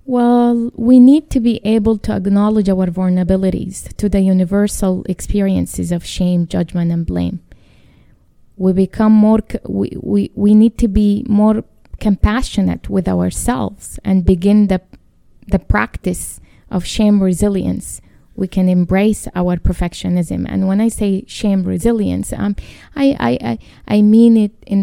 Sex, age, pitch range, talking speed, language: female, 20-39, 180-210 Hz, 145 wpm, English